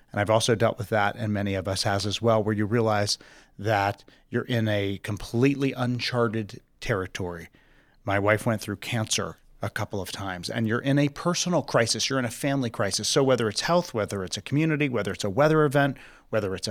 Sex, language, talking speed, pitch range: male, English, 210 wpm, 110-155 Hz